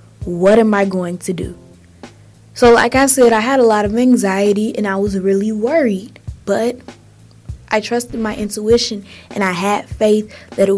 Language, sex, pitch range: English, female, 195-230 Hz